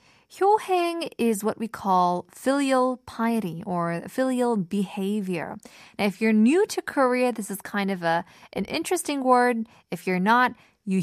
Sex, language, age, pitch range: female, Korean, 20-39, 180-255 Hz